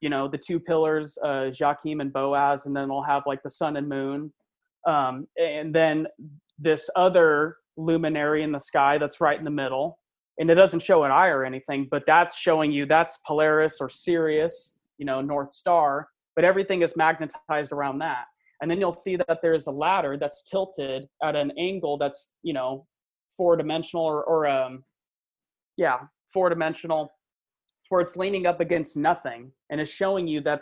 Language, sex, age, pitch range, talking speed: English, male, 20-39, 145-170 Hz, 185 wpm